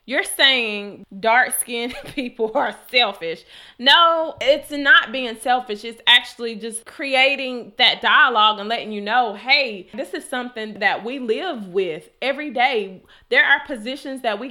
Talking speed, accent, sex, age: 150 wpm, American, female, 20-39